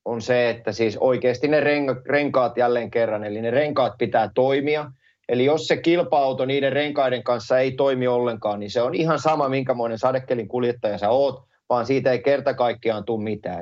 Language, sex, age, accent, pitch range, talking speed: Finnish, male, 30-49, native, 120-150 Hz, 175 wpm